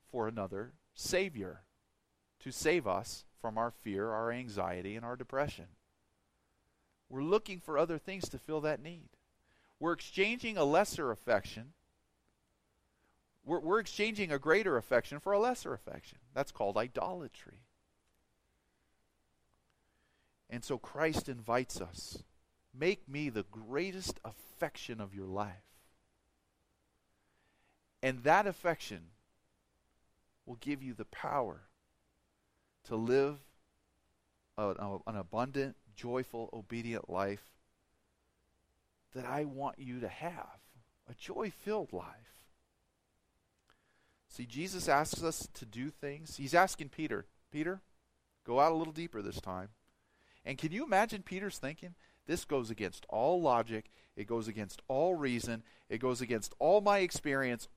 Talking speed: 125 wpm